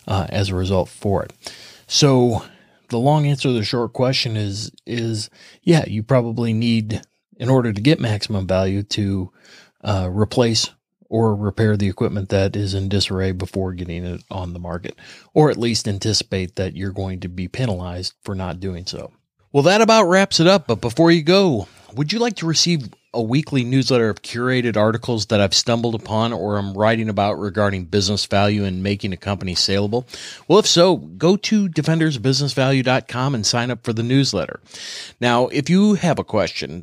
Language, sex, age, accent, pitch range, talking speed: English, male, 30-49, American, 100-140 Hz, 185 wpm